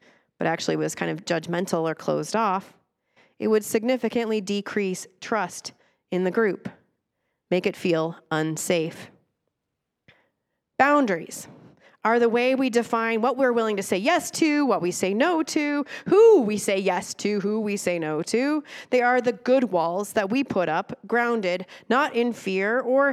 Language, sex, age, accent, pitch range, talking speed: English, female, 30-49, American, 180-245 Hz, 165 wpm